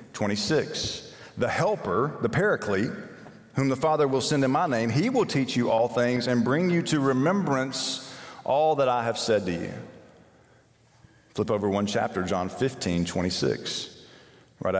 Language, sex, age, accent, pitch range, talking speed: English, male, 40-59, American, 105-140 Hz, 160 wpm